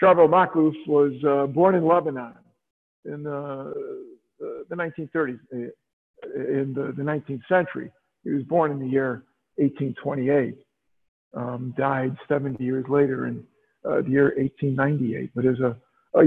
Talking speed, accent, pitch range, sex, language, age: 130 wpm, American, 130-160 Hz, male, English, 50-69